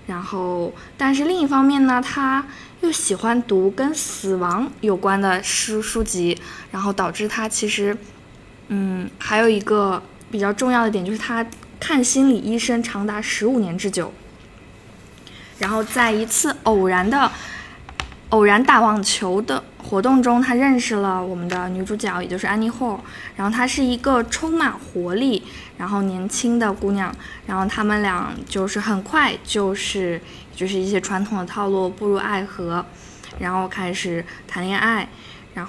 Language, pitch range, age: Chinese, 190-235 Hz, 20-39